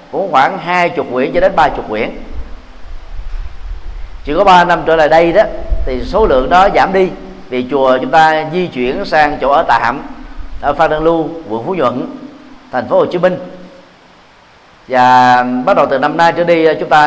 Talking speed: 195 wpm